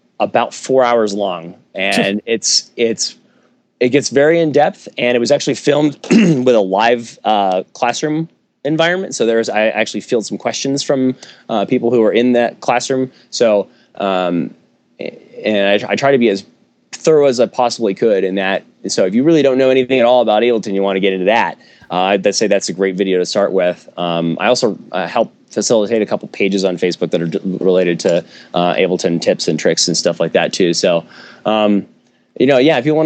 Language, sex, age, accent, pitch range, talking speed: English, male, 20-39, American, 95-130 Hz, 210 wpm